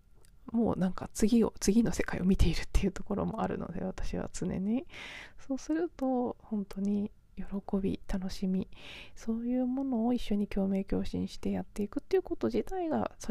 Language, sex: Japanese, female